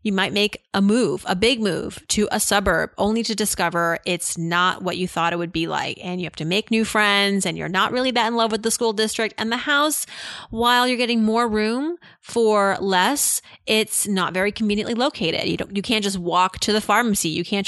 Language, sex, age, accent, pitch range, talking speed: English, female, 30-49, American, 180-230 Hz, 225 wpm